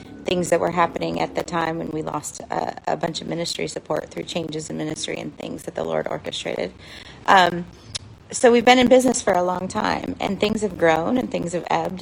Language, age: English, 30-49